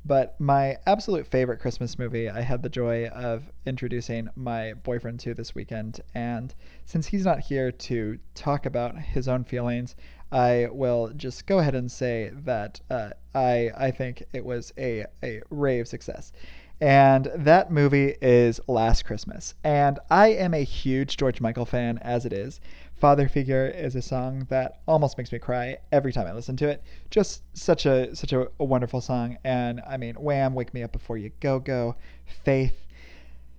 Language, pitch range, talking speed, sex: English, 120-140 Hz, 175 wpm, male